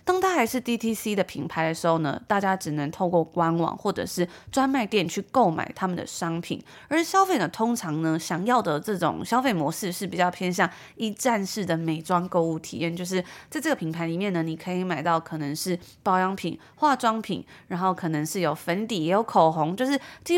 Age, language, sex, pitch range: 20-39, Chinese, female, 170-225 Hz